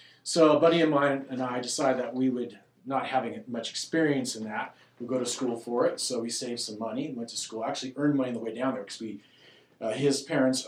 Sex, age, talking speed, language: male, 40-59, 255 wpm, English